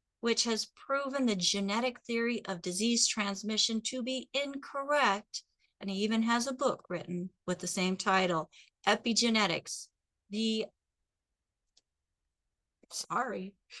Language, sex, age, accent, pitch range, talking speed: English, female, 40-59, American, 200-265 Hz, 115 wpm